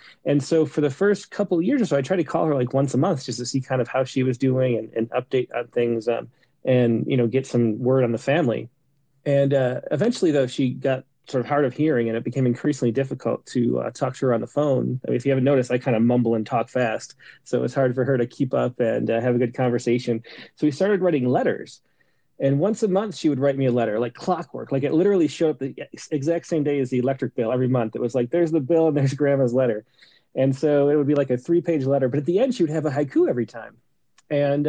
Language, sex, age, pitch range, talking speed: English, male, 30-49, 125-155 Hz, 275 wpm